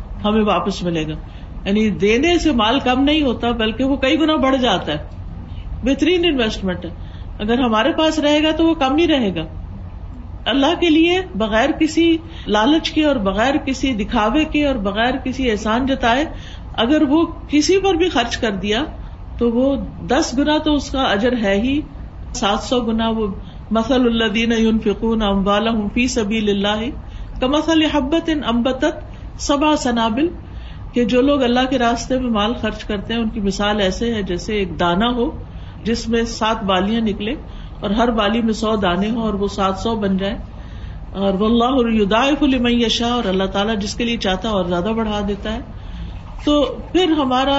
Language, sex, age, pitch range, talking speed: Urdu, female, 50-69, 205-270 Hz, 180 wpm